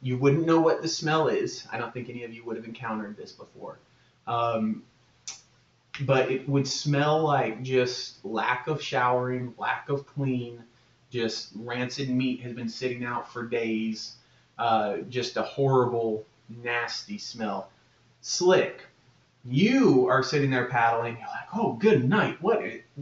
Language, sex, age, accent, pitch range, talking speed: English, male, 30-49, American, 120-140 Hz, 155 wpm